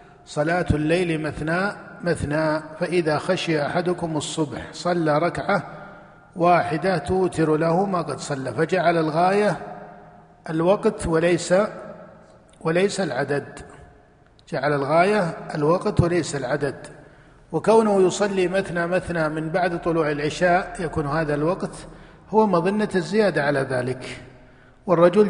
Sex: male